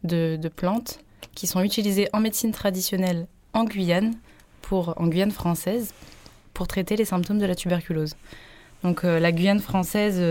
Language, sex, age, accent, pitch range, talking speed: French, female, 20-39, French, 160-195 Hz, 155 wpm